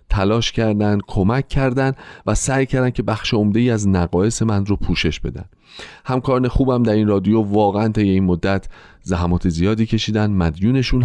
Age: 30-49